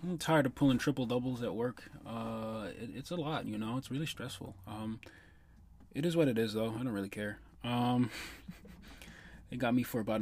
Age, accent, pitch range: 20-39, American, 115-150 Hz